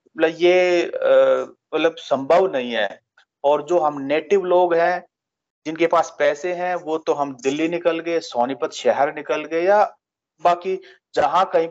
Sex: male